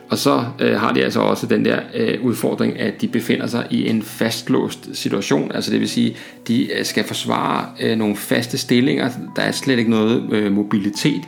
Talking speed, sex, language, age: 200 wpm, male, Danish, 40-59